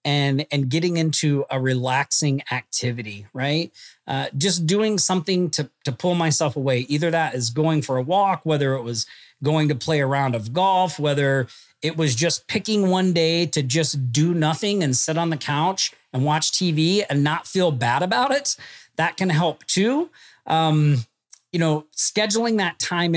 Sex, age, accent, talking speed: male, 40-59, American, 180 wpm